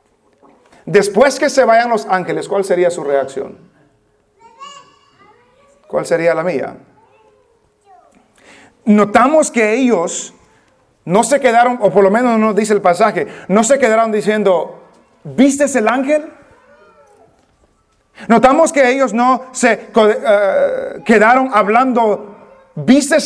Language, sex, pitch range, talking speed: English, male, 215-275 Hz, 115 wpm